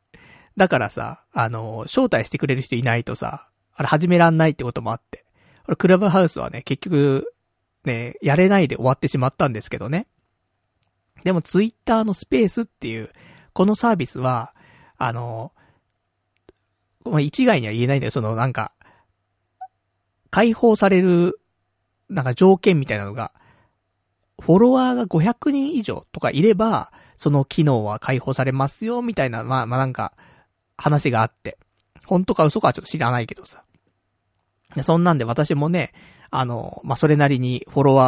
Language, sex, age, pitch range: Japanese, male, 40-59, 115-175 Hz